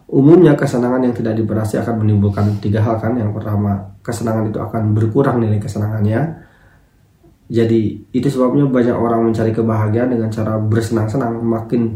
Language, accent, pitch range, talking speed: Indonesian, native, 105-125 Hz, 145 wpm